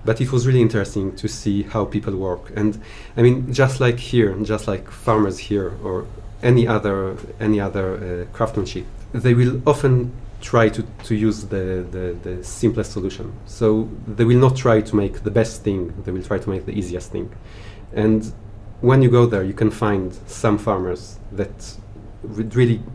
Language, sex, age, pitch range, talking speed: English, male, 30-49, 100-110 Hz, 185 wpm